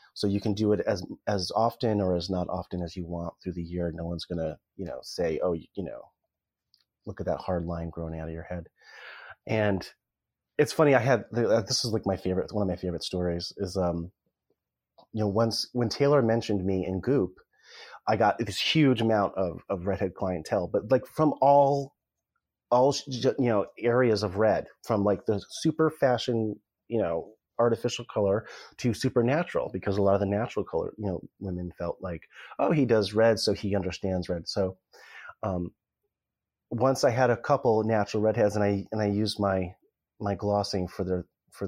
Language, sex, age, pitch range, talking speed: English, male, 30-49, 95-115 Hz, 195 wpm